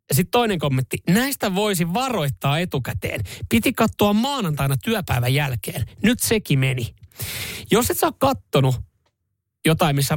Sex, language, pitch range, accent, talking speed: male, Finnish, 120-165 Hz, native, 130 wpm